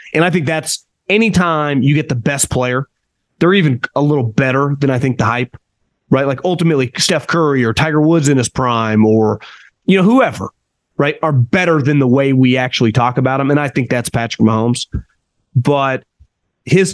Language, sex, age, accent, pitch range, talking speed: English, male, 30-49, American, 125-165 Hz, 190 wpm